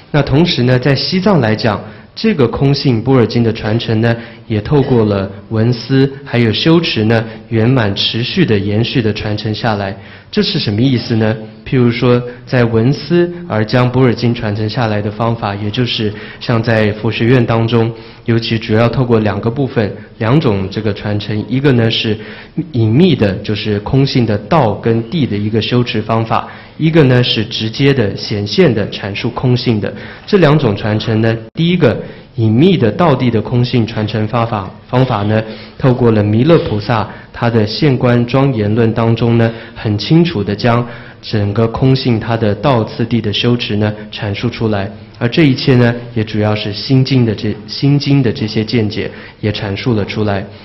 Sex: male